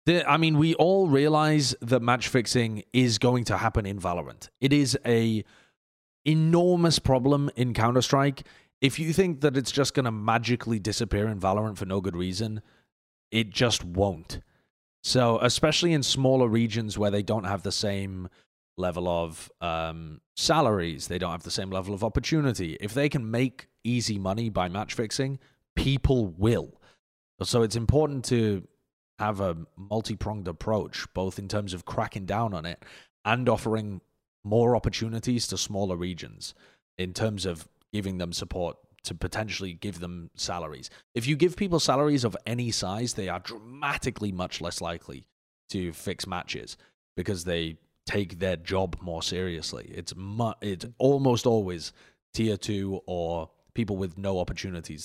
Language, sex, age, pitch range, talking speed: English, male, 30-49, 90-125 Hz, 155 wpm